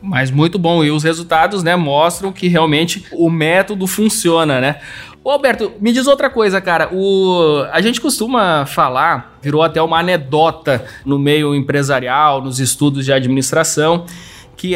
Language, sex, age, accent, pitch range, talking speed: Portuguese, male, 20-39, Brazilian, 160-205 Hz, 150 wpm